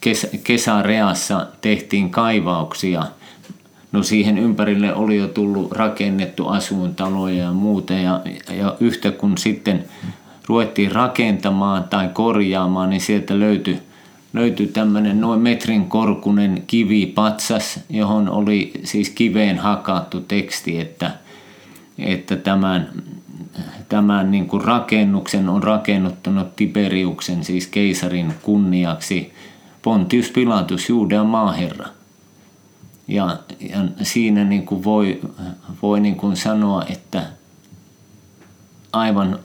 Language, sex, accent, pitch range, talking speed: Finnish, male, native, 95-105 Hz, 100 wpm